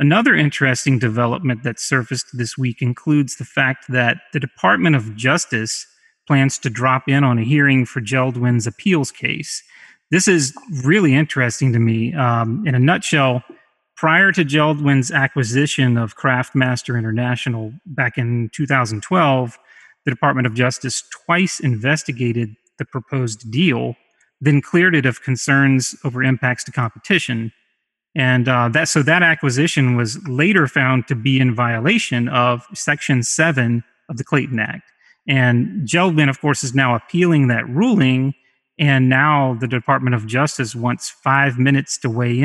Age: 30-49